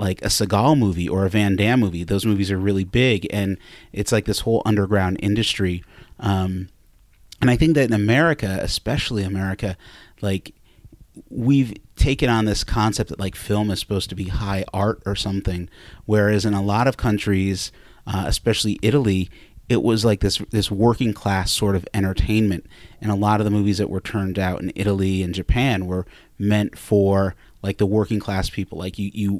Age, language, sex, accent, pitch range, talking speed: 30-49, English, male, American, 95-110 Hz, 185 wpm